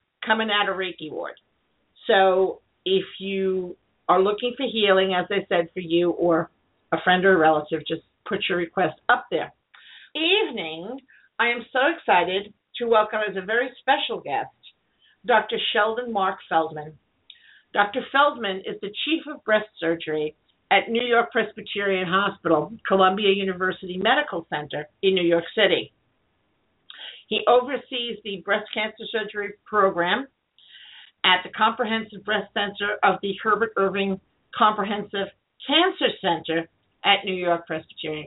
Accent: American